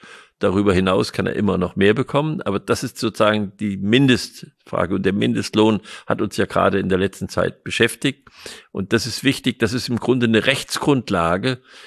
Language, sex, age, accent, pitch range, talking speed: German, male, 50-69, German, 100-130 Hz, 180 wpm